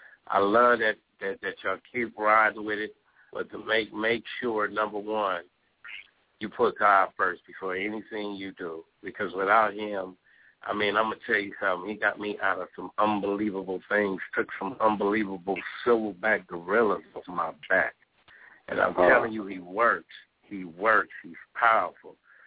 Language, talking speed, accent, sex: English, 165 wpm, American, male